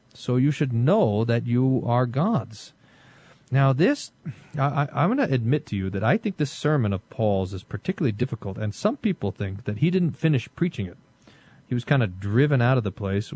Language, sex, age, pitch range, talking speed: English, male, 40-59, 110-140 Hz, 200 wpm